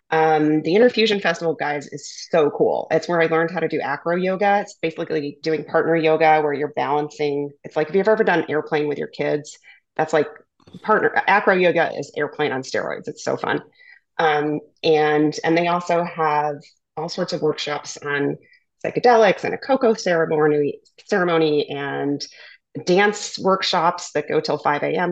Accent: American